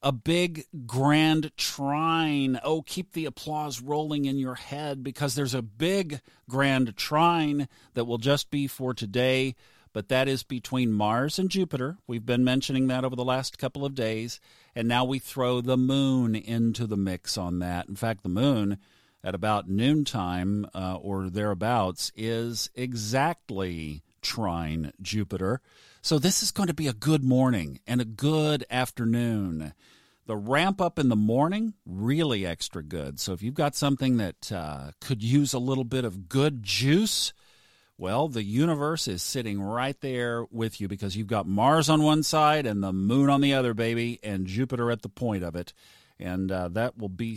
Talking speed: 175 wpm